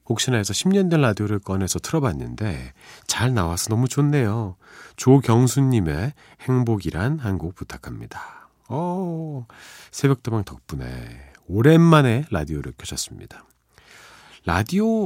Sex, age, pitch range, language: male, 40-59, 80-140 Hz, Korean